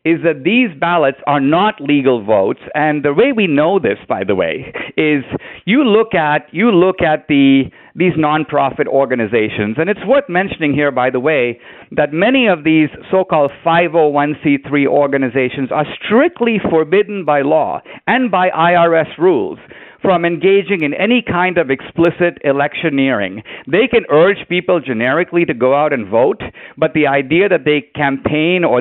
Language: English